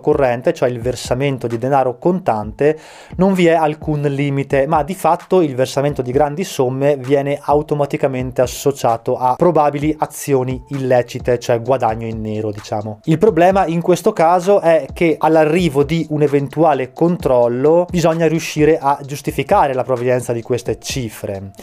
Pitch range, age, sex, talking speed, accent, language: 130-165 Hz, 20-39, male, 145 wpm, native, Italian